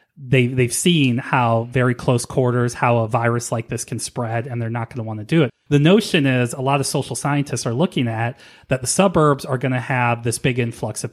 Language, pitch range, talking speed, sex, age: English, 115-145 Hz, 235 wpm, male, 30-49